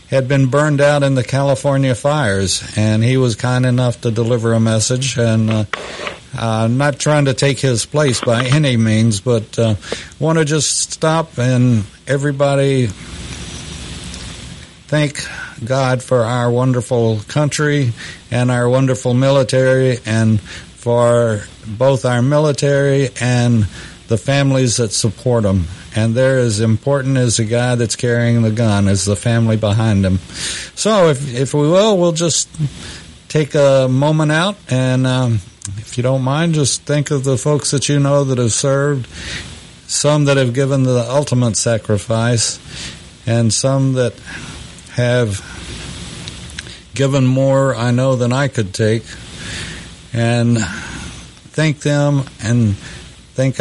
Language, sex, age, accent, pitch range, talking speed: English, male, 60-79, American, 110-140 Hz, 140 wpm